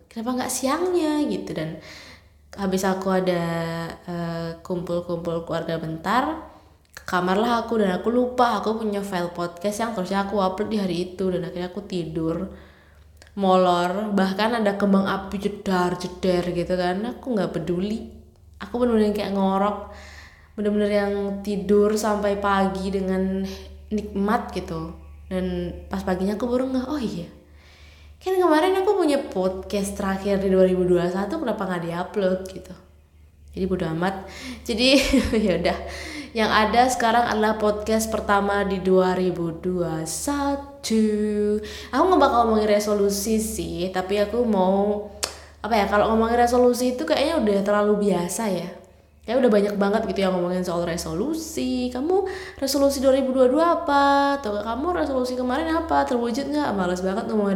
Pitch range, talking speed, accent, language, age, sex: 180-230 Hz, 140 wpm, native, Indonesian, 20-39, female